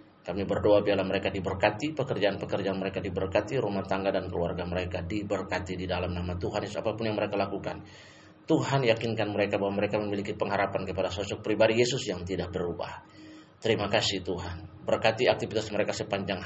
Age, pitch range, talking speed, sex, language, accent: 30-49, 95-105 Hz, 155 wpm, male, Indonesian, native